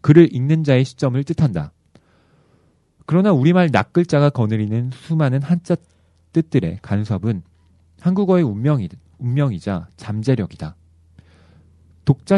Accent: native